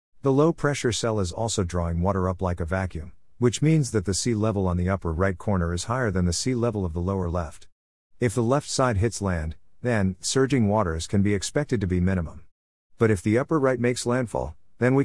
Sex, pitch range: male, 90-120 Hz